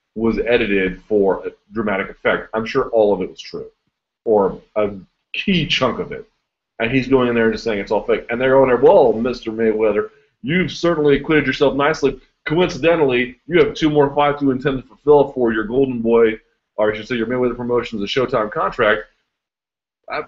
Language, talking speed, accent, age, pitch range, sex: English, 200 wpm, American, 30-49, 115-150 Hz, male